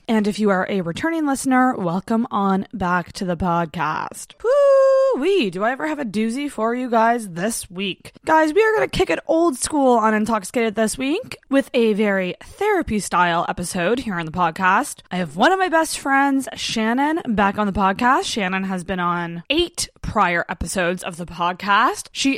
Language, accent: English, American